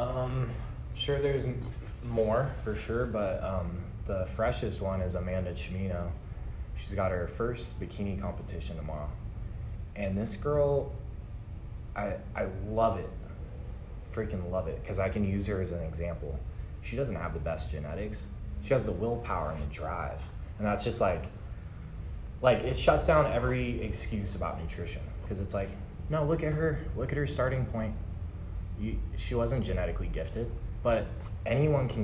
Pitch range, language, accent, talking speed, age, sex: 90-115 Hz, English, American, 155 wpm, 20-39, male